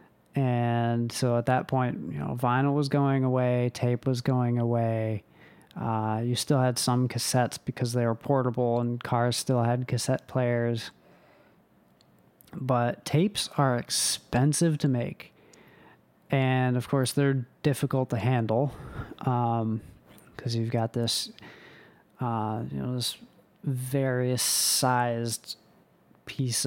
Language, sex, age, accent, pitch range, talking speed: English, male, 30-49, American, 120-135 Hz, 125 wpm